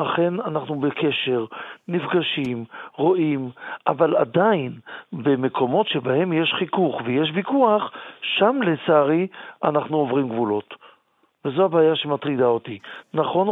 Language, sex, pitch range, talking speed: Hebrew, male, 150-190 Hz, 100 wpm